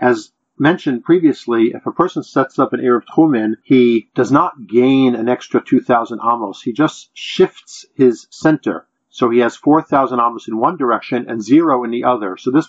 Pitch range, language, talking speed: 120-190 Hz, English, 185 wpm